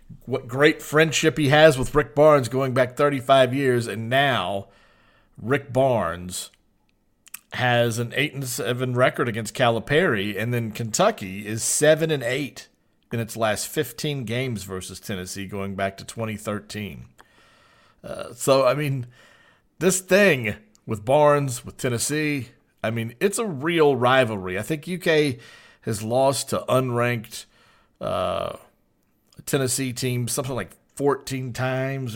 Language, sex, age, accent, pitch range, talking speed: English, male, 40-59, American, 100-130 Hz, 135 wpm